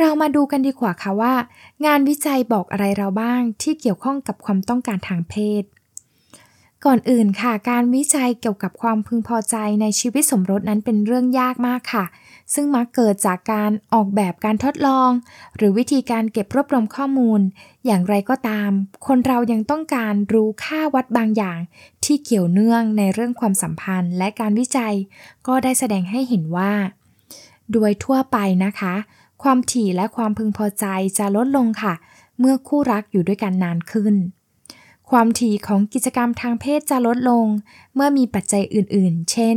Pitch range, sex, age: 195-250 Hz, female, 10-29